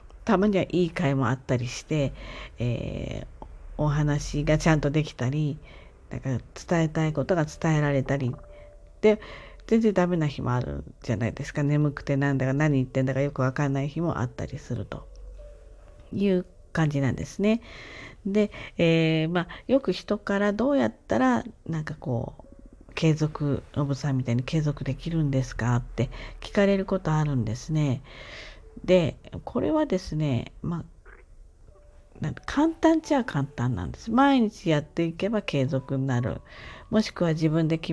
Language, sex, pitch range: Japanese, female, 130-185 Hz